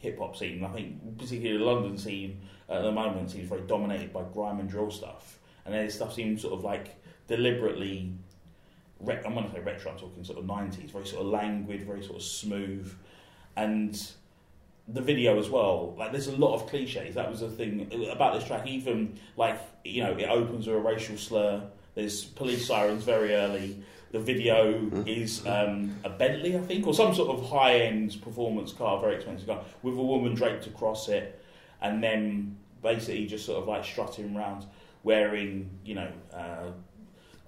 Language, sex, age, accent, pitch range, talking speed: English, male, 30-49, British, 100-120 Hz, 185 wpm